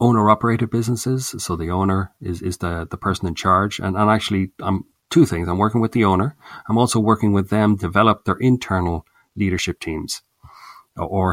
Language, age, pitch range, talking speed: English, 40-59, 90-110 Hz, 185 wpm